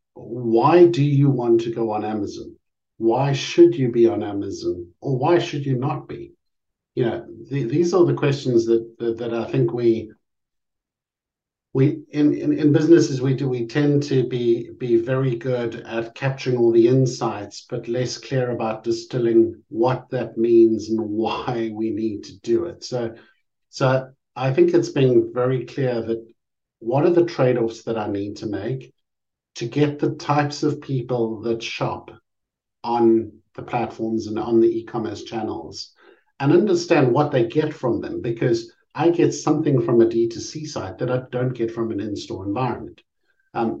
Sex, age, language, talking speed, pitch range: male, 60-79, English, 170 wpm, 115-150 Hz